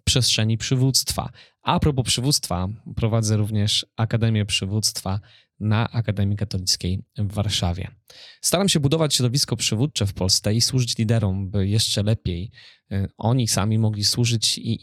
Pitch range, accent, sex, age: 105-125 Hz, native, male, 20-39